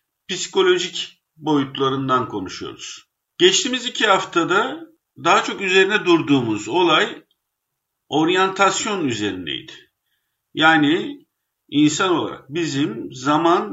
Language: Turkish